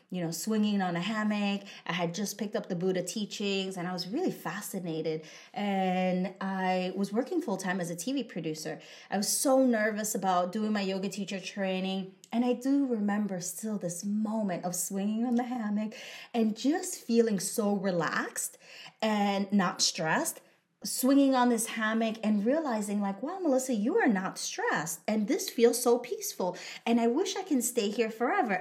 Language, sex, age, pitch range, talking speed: English, female, 30-49, 190-245 Hz, 180 wpm